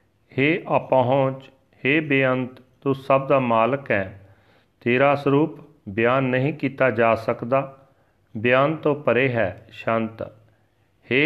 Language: Punjabi